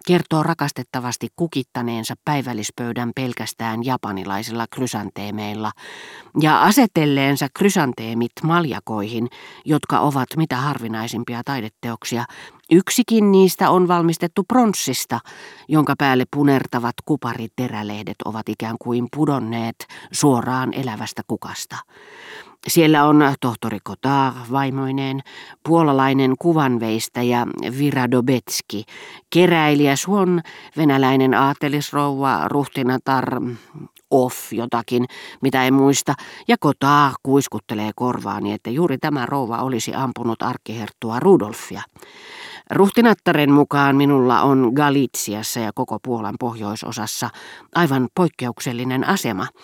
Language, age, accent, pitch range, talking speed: Finnish, 40-59, native, 115-150 Hz, 90 wpm